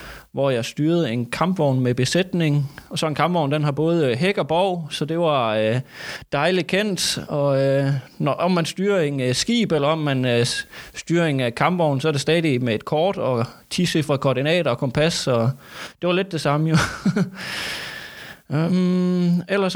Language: Danish